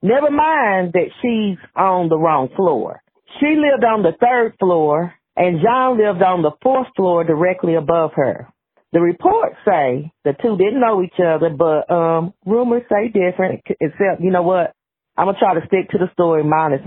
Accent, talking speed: American, 185 wpm